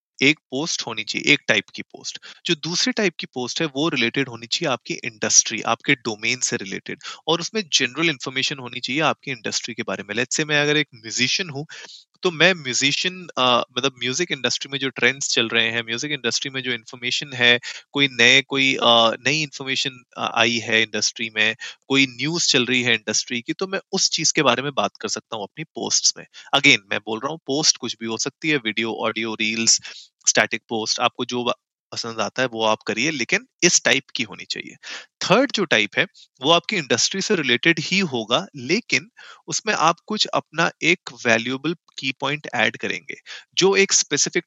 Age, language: 30-49, Hindi